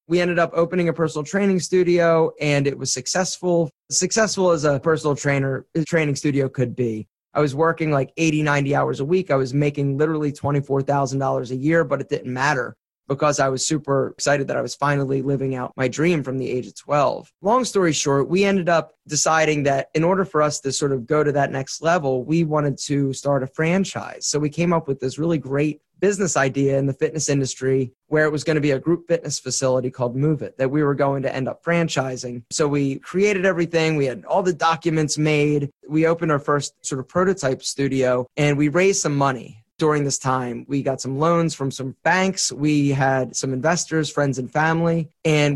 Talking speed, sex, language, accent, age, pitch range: 210 wpm, male, English, American, 20-39, 135-165 Hz